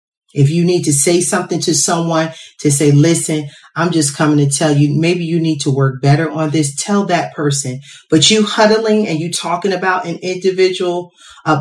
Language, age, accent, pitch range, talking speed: English, 40-59, American, 155-210 Hz, 195 wpm